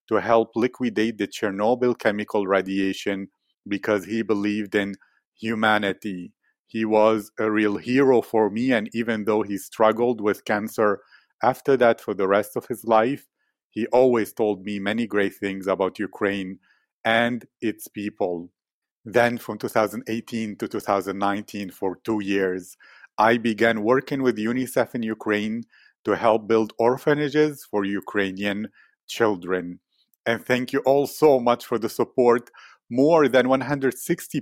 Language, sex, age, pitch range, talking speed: English, male, 40-59, 105-125 Hz, 140 wpm